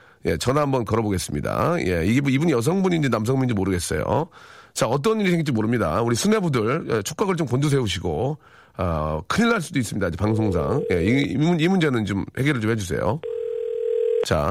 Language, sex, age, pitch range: Korean, male, 40-59, 110-185 Hz